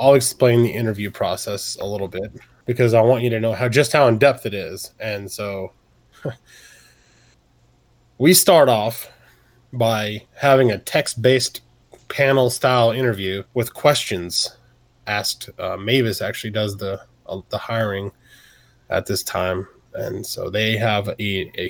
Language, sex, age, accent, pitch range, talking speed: English, male, 20-39, American, 110-125 Hz, 145 wpm